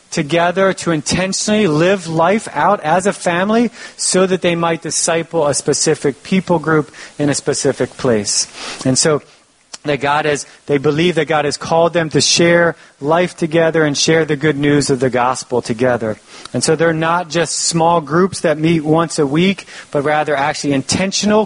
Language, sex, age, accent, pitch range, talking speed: English, male, 30-49, American, 140-180 Hz, 175 wpm